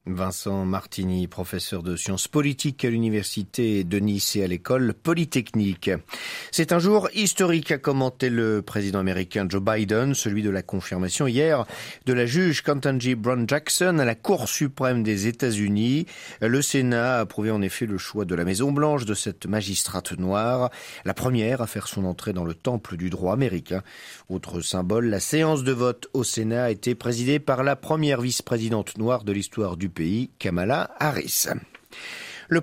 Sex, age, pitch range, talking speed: male, 40-59, 95-135 Hz, 170 wpm